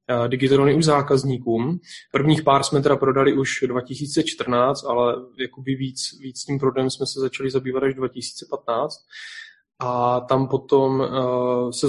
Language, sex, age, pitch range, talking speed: Czech, male, 20-39, 130-145 Hz, 120 wpm